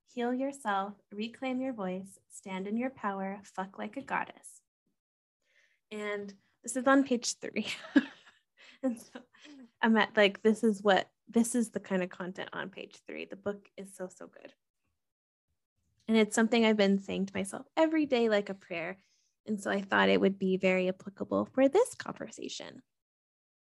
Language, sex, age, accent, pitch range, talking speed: English, female, 10-29, American, 195-230 Hz, 170 wpm